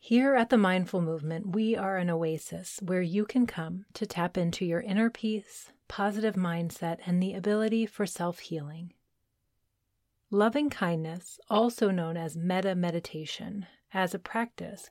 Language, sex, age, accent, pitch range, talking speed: English, female, 30-49, American, 170-210 Hz, 135 wpm